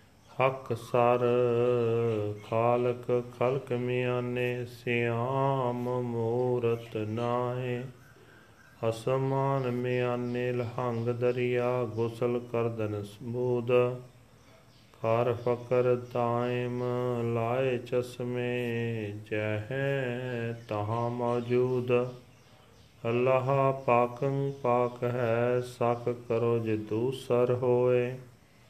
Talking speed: 65 wpm